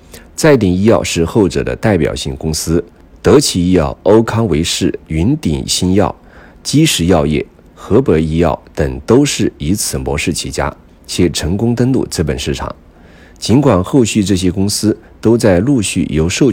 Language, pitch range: Chinese, 80-105 Hz